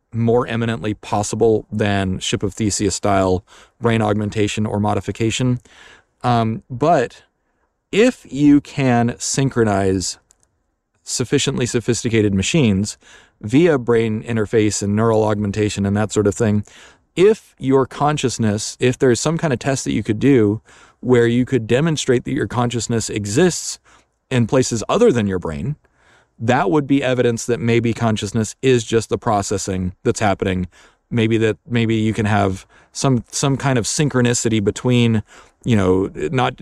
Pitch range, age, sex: 105-125 Hz, 30-49, male